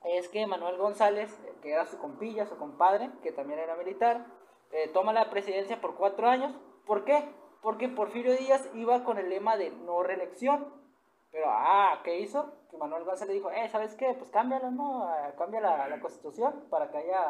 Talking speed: 190 wpm